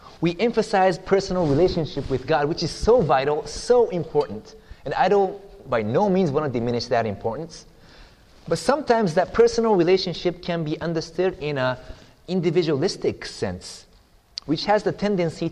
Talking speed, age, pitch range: 150 wpm, 30-49, 140-195 Hz